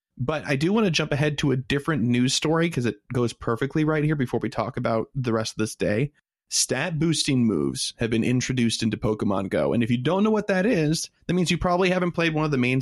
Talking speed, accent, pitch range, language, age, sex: 255 wpm, American, 115-155 Hz, English, 30-49, male